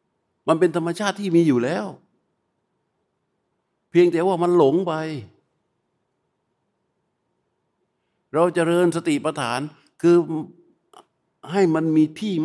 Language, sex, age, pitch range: Thai, male, 60-79, 130-180 Hz